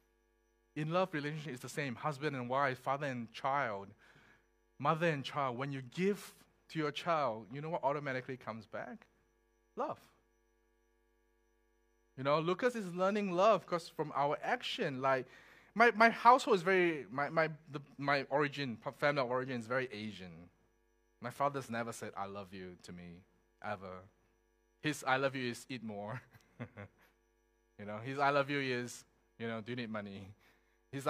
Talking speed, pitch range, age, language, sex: 165 wpm, 115-155 Hz, 20-39, English, male